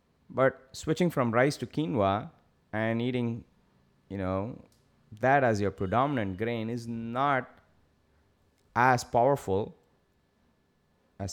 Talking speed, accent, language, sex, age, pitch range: 105 wpm, Indian, English, male, 20-39, 85-120 Hz